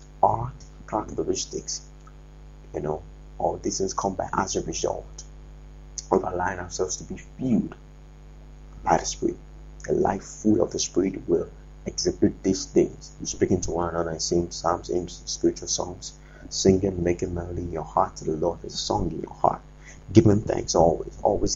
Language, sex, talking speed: English, male, 170 wpm